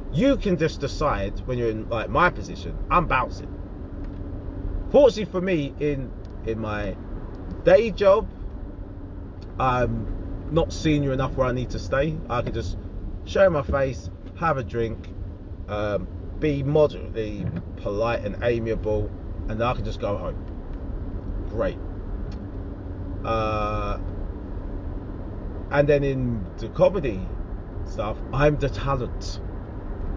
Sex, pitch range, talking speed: male, 95-120 Hz, 120 wpm